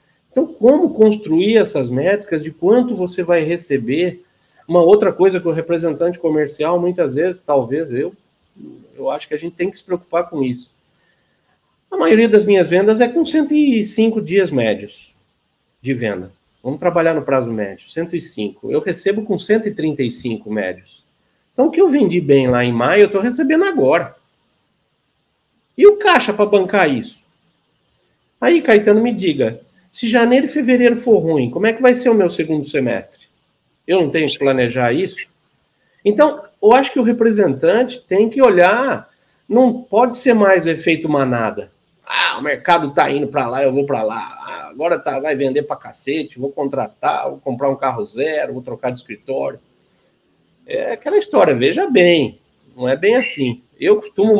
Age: 50-69